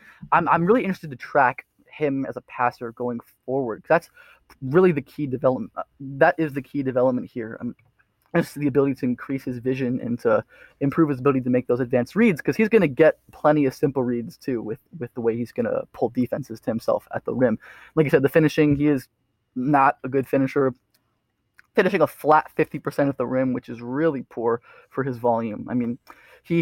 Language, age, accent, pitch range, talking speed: English, 20-39, American, 125-155 Hz, 210 wpm